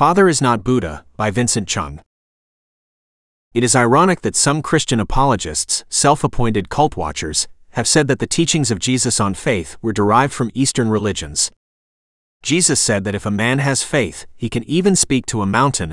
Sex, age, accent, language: male, 30-49, American, English